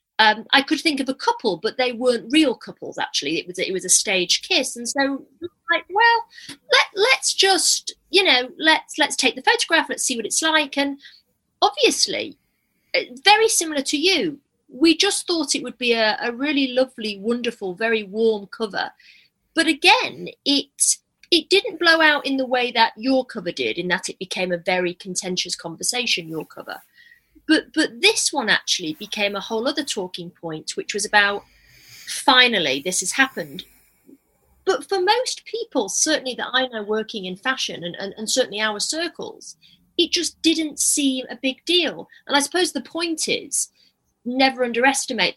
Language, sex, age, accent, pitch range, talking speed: English, female, 30-49, British, 210-320 Hz, 175 wpm